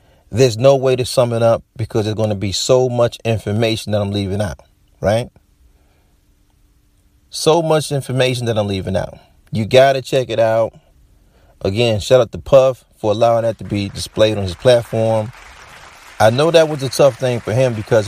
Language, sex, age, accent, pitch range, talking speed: English, male, 40-59, American, 95-130 Hz, 190 wpm